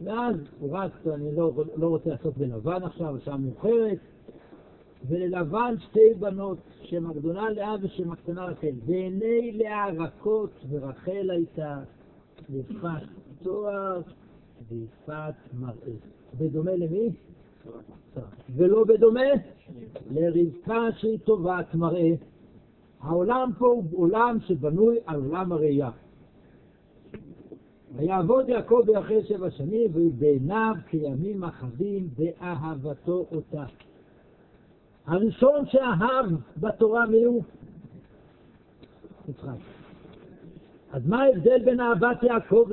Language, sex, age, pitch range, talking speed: Hebrew, male, 60-79, 150-215 Hz, 95 wpm